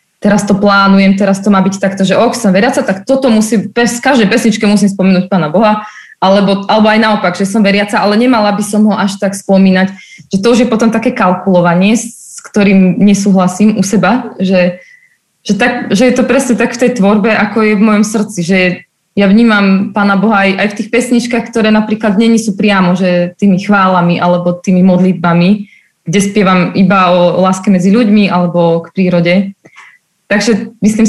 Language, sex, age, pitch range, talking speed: Slovak, female, 20-39, 185-215 Hz, 190 wpm